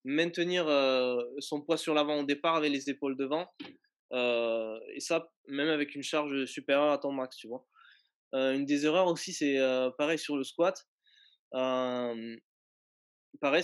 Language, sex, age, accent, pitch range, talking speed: French, male, 20-39, French, 130-155 Hz, 145 wpm